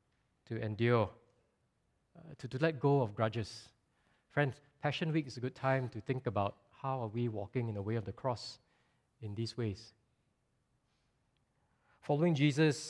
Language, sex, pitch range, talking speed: English, male, 120-150 Hz, 160 wpm